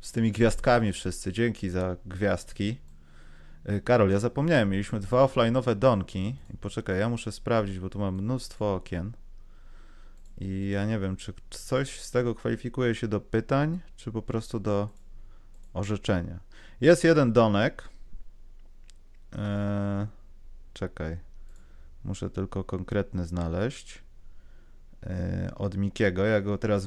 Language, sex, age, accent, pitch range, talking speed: Polish, male, 30-49, native, 95-120 Hz, 120 wpm